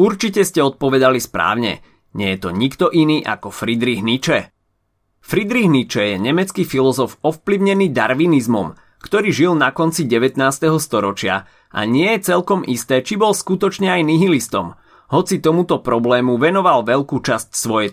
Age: 30-49